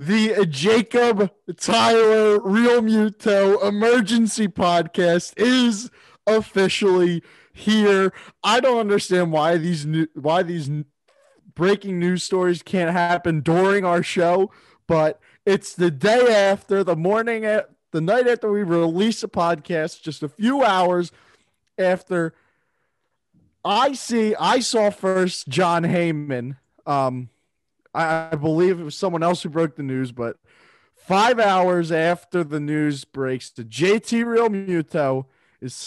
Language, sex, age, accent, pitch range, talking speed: English, male, 30-49, American, 155-205 Hz, 130 wpm